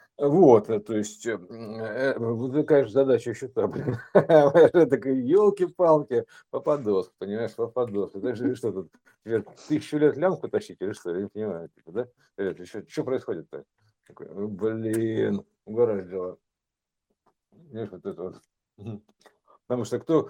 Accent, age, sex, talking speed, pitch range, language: native, 60-79, male, 90 wpm, 115-155 Hz, Russian